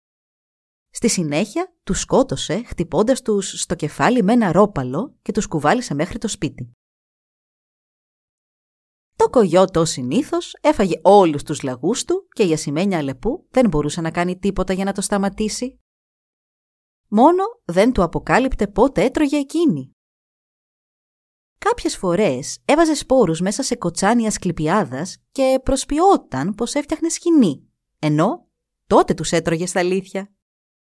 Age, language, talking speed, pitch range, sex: 30-49, Greek, 125 wpm, 160-260 Hz, female